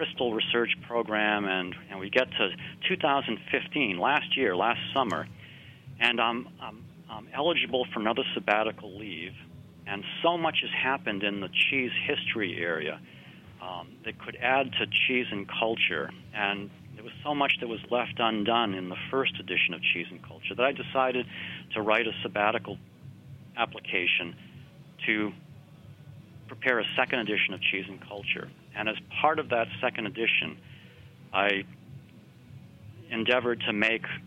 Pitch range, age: 105-130 Hz, 40-59